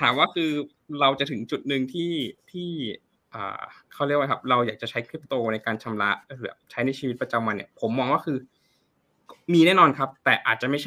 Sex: male